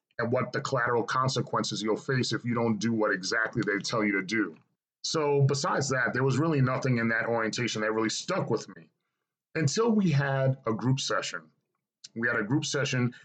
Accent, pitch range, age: American, 110-140 Hz, 40-59